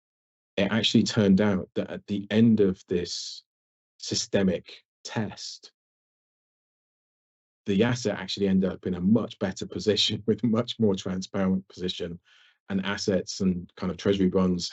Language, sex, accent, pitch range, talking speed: English, male, British, 90-105 Hz, 145 wpm